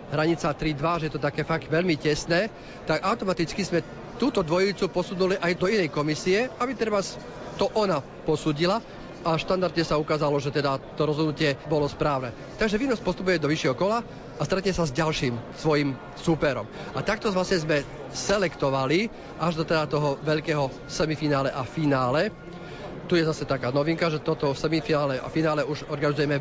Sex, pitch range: male, 145-170 Hz